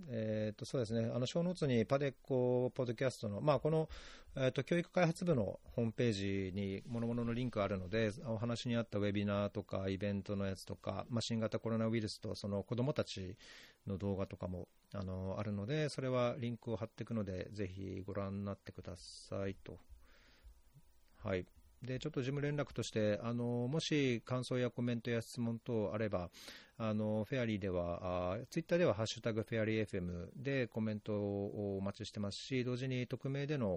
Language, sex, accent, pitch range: Japanese, male, native, 95-120 Hz